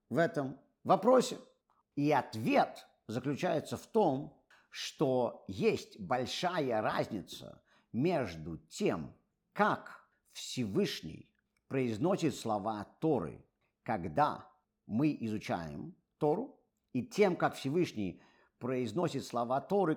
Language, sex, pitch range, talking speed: Russian, male, 110-165 Hz, 90 wpm